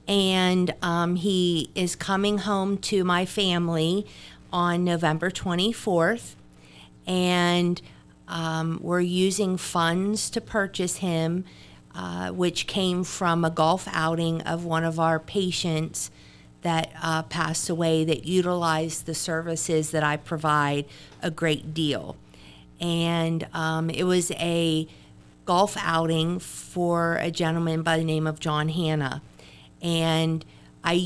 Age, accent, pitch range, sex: 50-69, American, 155-175 Hz, female